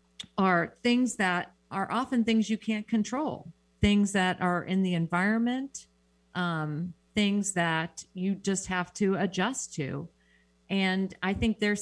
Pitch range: 150-195 Hz